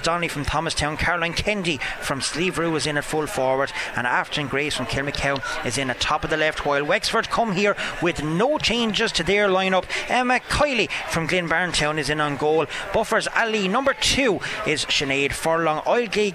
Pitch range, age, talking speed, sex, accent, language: 145-210 Hz, 30-49, 185 wpm, male, Irish, English